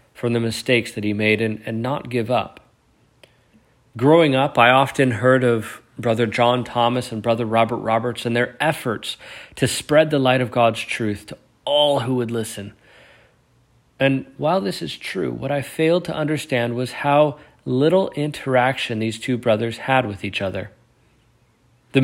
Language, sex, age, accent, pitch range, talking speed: English, male, 40-59, American, 115-135 Hz, 165 wpm